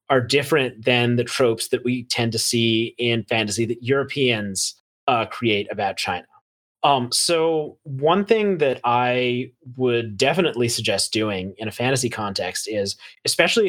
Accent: American